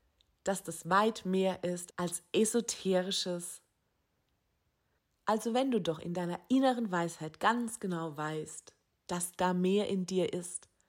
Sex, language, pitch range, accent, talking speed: female, German, 170-225 Hz, German, 130 wpm